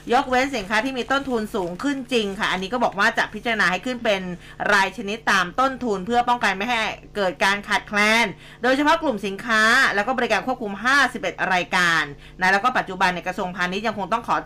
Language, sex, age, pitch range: Thai, female, 20-39, 195-250 Hz